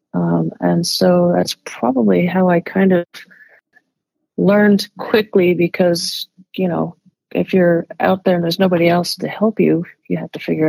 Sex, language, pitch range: female, English, 165-195 Hz